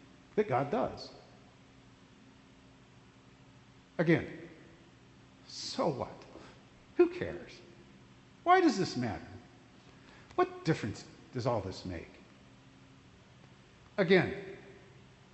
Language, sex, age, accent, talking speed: English, male, 50-69, American, 75 wpm